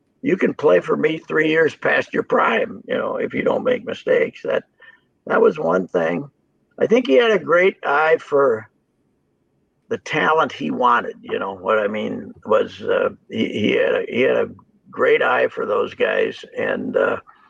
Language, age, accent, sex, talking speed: English, 60-79, American, male, 185 wpm